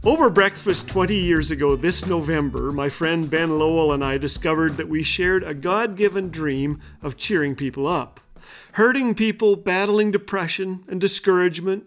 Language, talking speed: English, 150 wpm